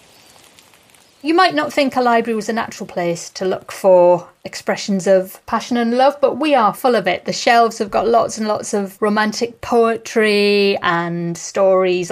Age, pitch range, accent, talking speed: 30-49, 175-225 Hz, British, 180 wpm